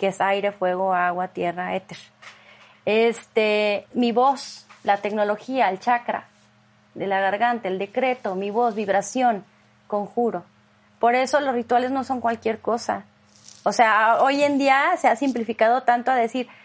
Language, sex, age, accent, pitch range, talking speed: Spanish, female, 30-49, Mexican, 220-290 Hz, 150 wpm